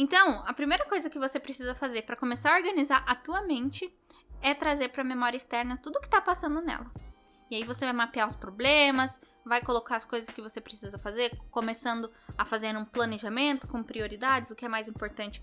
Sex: female